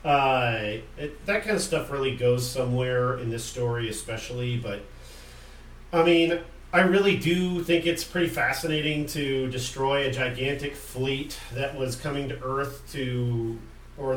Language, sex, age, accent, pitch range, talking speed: English, male, 40-59, American, 120-150 Hz, 150 wpm